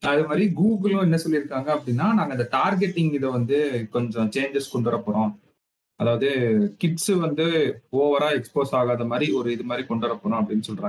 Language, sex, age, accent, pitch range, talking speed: Tamil, male, 30-49, native, 120-170 Hz, 155 wpm